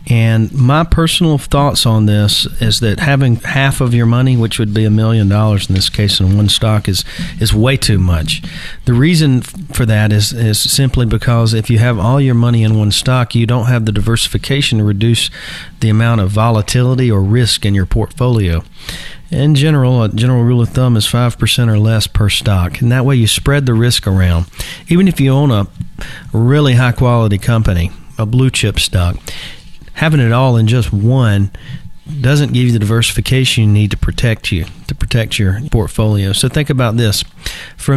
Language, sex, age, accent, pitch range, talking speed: English, male, 40-59, American, 105-125 Hz, 195 wpm